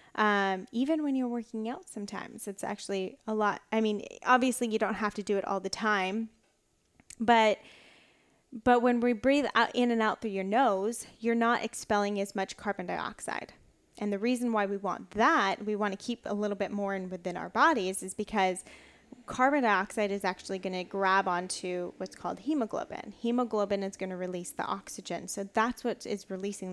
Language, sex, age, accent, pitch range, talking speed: English, female, 10-29, American, 195-240 Hz, 195 wpm